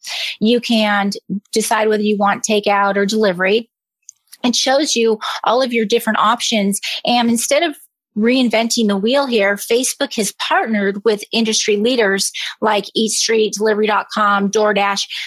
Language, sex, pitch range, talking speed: English, female, 200-235 Hz, 135 wpm